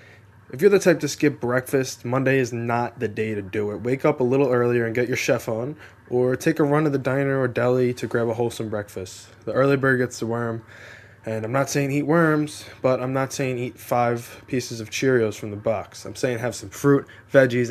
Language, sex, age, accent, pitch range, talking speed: English, male, 20-39, American, 110-130 Hz, 235 wpm